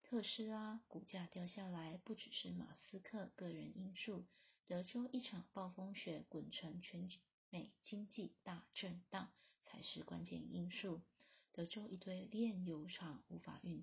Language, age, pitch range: Chinese, 30-49, 175-215 Hz